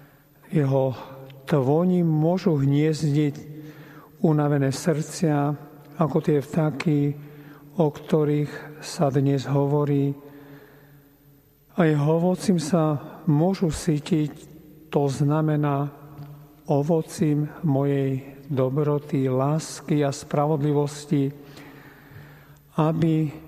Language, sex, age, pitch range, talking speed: Slovak, male, 50-69, 135-155 Hz, 75 wpm